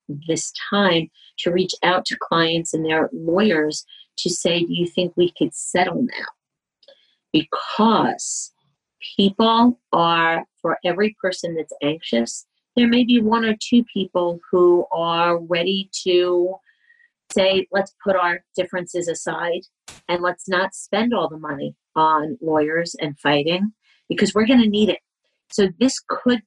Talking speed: 145 wpm